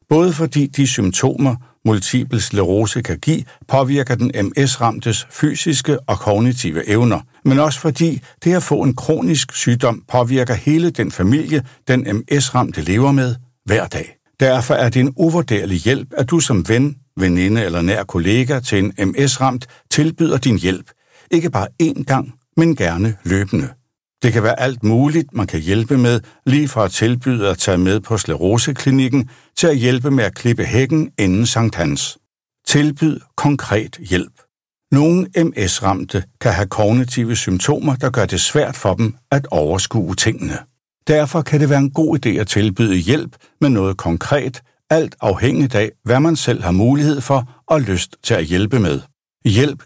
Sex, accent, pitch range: male, native, 105-140 Hz